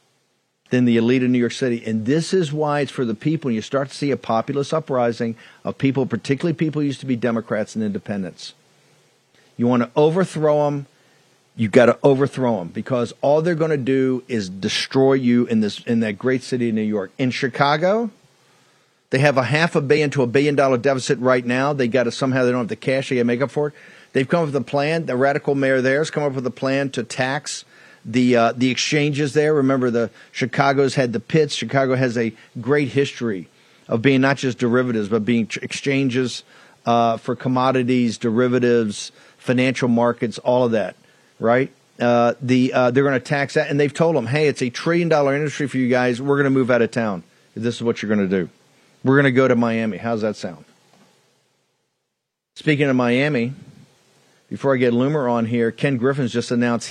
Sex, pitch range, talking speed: male, 120-140 Hz, 215 wpm